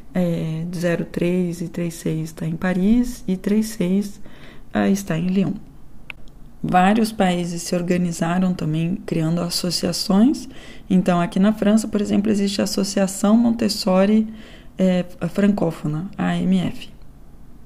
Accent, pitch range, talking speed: Brazilian, 180-210 Hz, 115 wpm